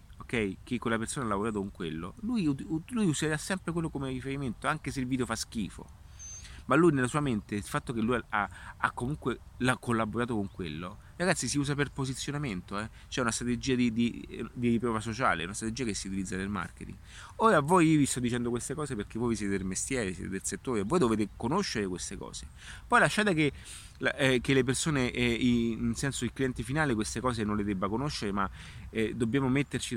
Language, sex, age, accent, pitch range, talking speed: Italian, male, 30-49, native, 100-130 Hz, 195 wpm